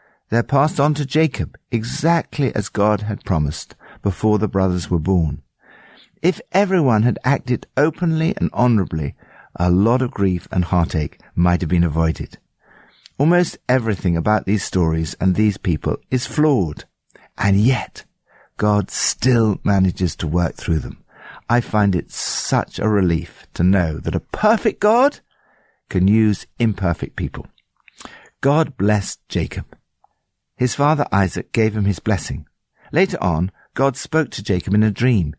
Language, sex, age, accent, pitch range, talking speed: English, male, 60-79, British, 90-130 Hz, 145 wpm